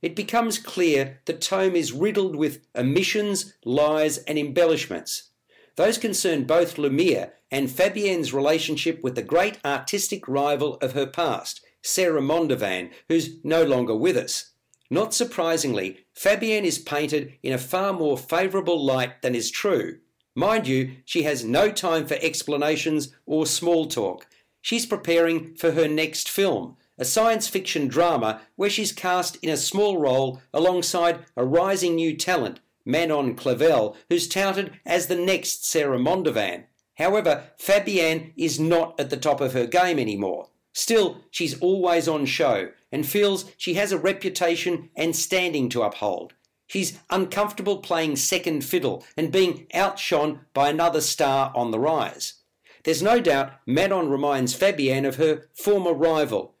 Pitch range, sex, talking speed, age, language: 145-185 Hz, male, 150 wpm, 50-69, English